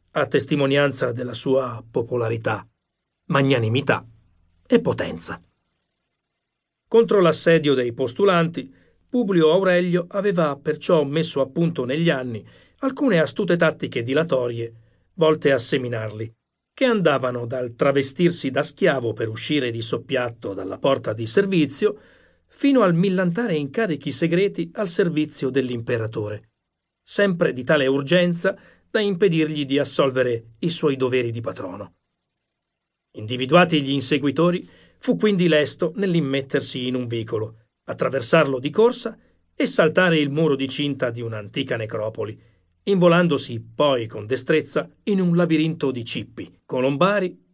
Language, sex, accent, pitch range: Italian, male, native, 125-175 Hz